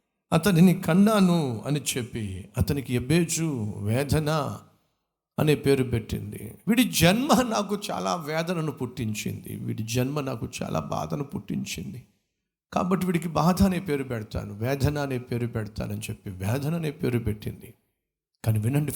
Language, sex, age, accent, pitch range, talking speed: Telugu, male, 50-69, native, 115-175 Hz, 120 wpm